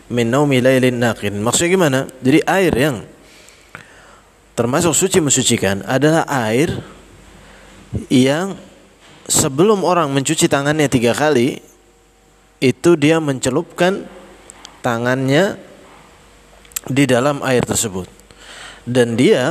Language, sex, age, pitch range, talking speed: Indonesian, male, 20-39, 115-145 Hz, 85 wpm